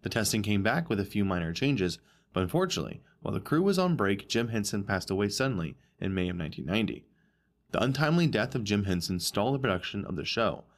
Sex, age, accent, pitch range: male, 20-39, American, 100-145 Hz